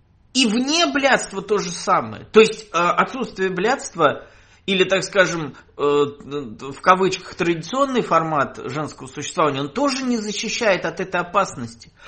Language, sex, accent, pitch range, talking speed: Russian, male, native, 165-225 Hz, 130 wpm